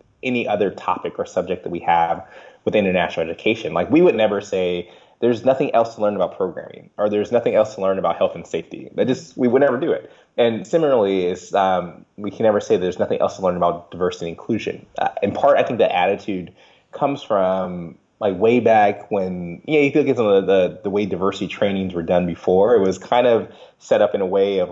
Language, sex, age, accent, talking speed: English, male, 20-39, American, 235 wpm